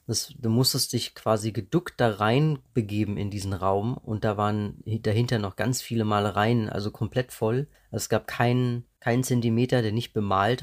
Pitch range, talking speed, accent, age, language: 105-125 Hz, 165 wpm, German, 30-49, German